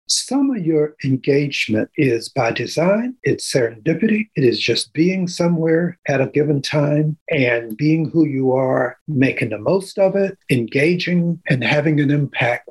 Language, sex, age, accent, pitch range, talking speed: English, male, 60-79, American, 125-160 Hz, 155 wpm